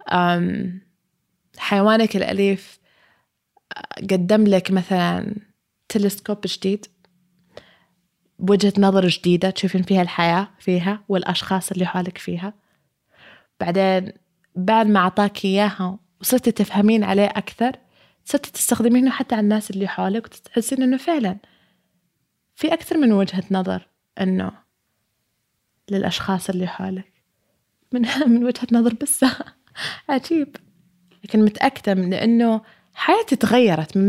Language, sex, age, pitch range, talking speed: Arabic, female, 20-39, 180-225 Hz, 105 wpm